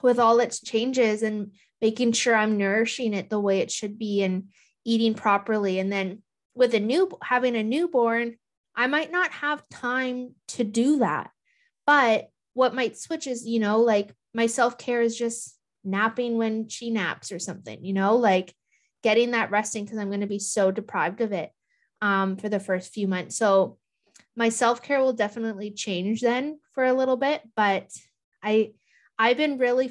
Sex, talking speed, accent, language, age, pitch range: female, 180 wpm, American, English, 20-39, 200-240 Hz